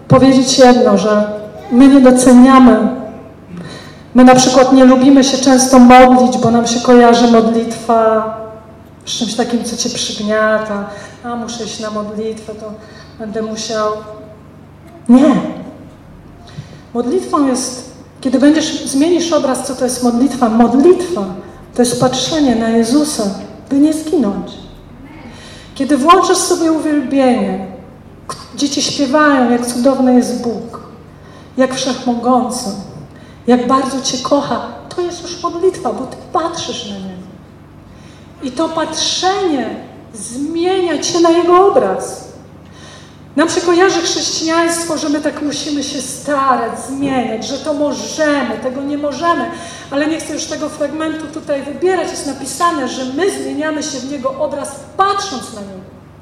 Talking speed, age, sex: 130 wpm, 40-59, female